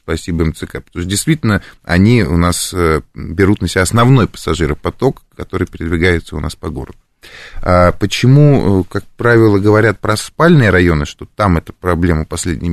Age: 20-39